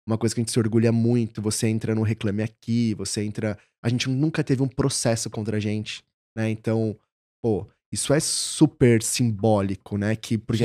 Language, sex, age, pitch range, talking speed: Portuguese, male, 20-39, 115-145 Hz, 190 wpm